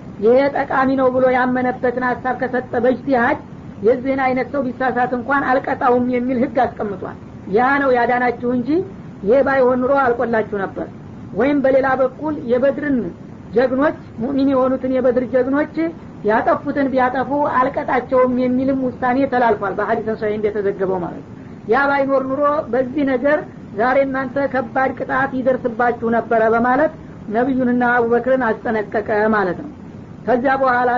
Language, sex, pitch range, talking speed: Amharic, female, 245-265 Hz, 120 wpm